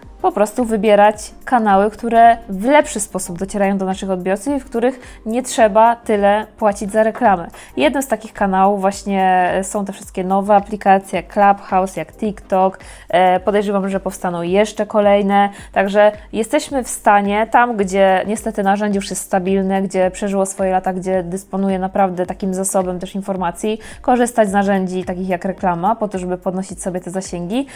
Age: 20-39